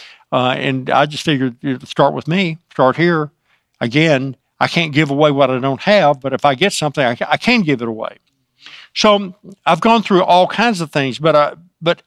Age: 50-69